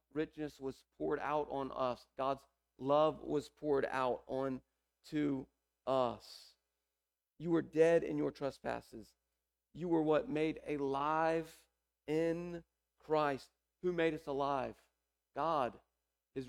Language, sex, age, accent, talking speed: English, male, 40-59, American, 120 wpm